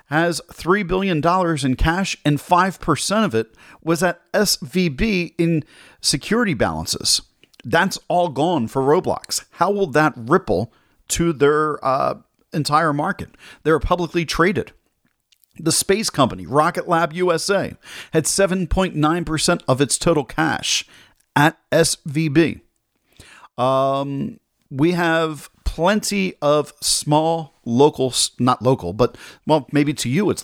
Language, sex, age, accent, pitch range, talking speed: English, male, 40-59, American, 130-170 Hz, 120 wpm